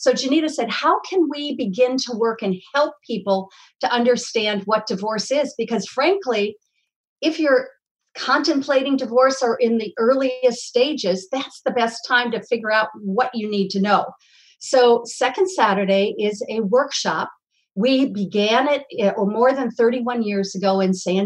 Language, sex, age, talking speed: English, female, 50-69, 160 wpm